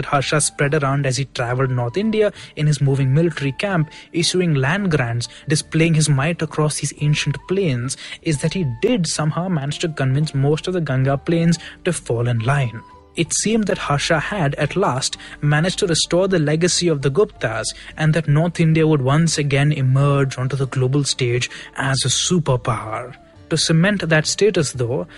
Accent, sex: Indian, male